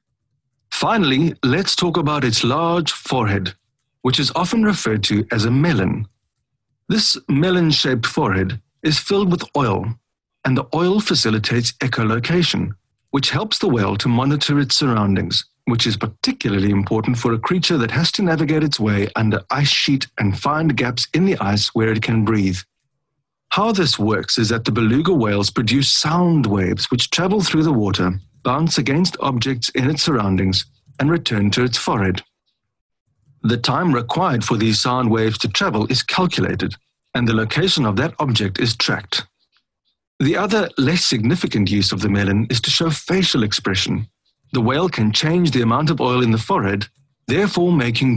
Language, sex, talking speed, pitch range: English, male, 165 wpm, 110-150 Hz